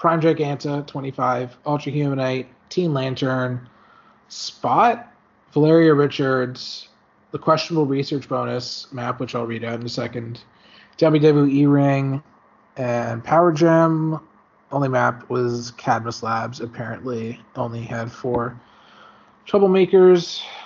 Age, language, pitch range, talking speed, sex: 30-49, English, 125-160 Hz, 105 wpm, male